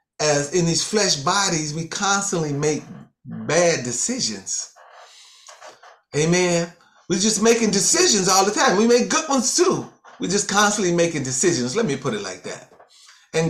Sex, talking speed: male, 155 wpm